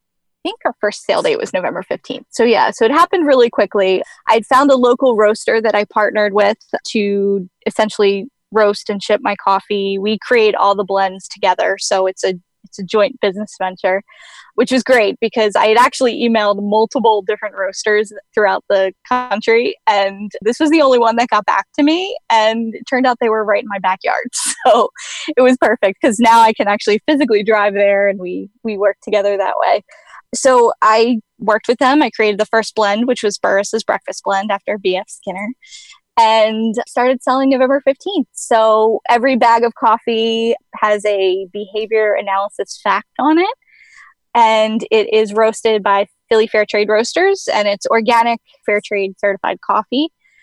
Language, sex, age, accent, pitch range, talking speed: English, female, 10-29, American, 205-250 Hz, 175 wpm